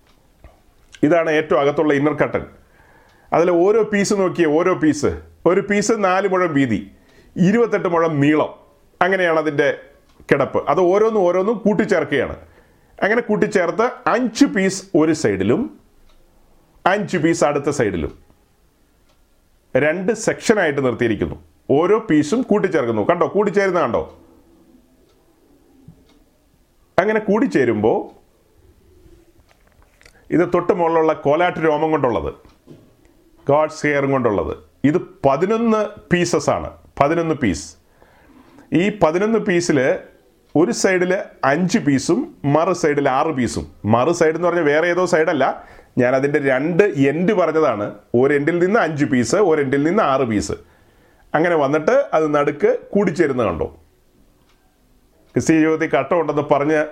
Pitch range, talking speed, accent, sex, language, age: 145-195 Hz, 105 wpm, native, male, Malayalam, 30-49